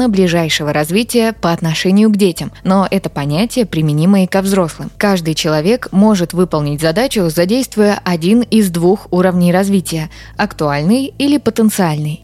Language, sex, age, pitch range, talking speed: Russian, female, 20-39, 170-215 Hz, 130 wpm